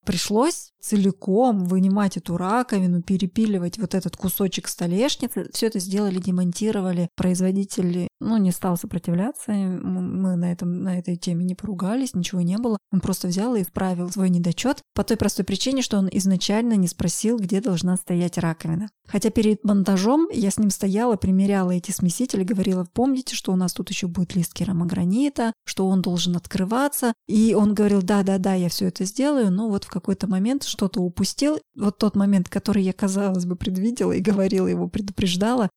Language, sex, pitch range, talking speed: Russian, female, 185-215 Hz, 170 wpm